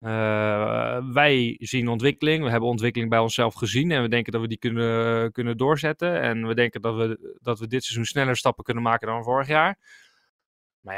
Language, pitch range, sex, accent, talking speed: Dutch, 120-165 Hz, male, Dutch, 190 wpm